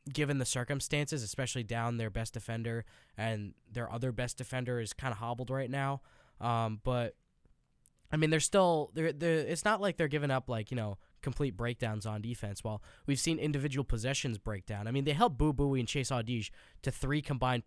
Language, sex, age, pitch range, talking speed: English, male, 10-29, 115-135 Hz, 205 wpm